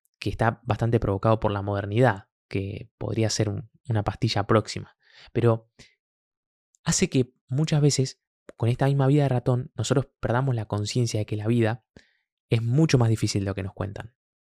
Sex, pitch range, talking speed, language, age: male, 105-130 Hz, 170 wpm, Spanish, 20-39